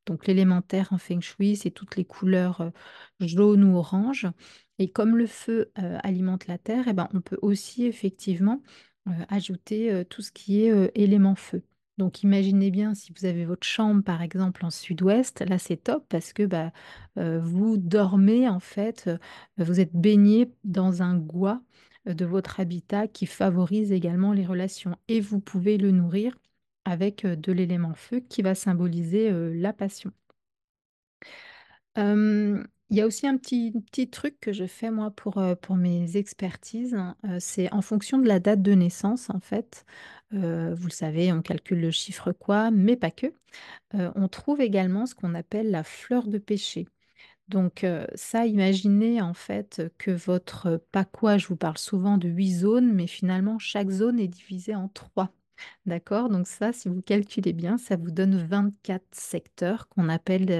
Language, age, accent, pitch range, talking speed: French, 30-49, French, 180-210 Hz, 180 wpm